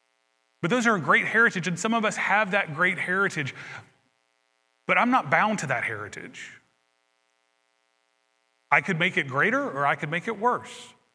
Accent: American